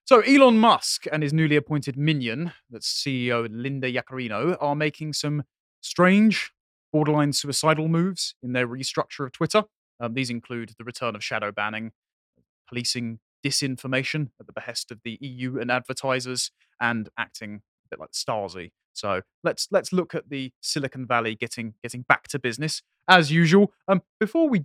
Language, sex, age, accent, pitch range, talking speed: English, male, 30-49, British, 120-155 Hz, 160 wpm